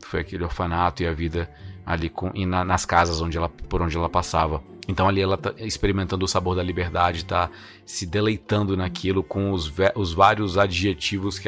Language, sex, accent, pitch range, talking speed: Portuguese, male, Brazilian, 90-110 Hz, 200 wpm